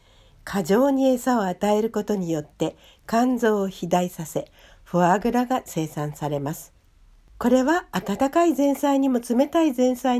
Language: Japanese